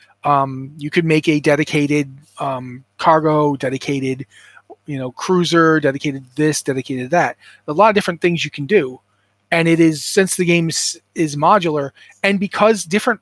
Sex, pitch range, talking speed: male, 150-185 Hz, 170 wpm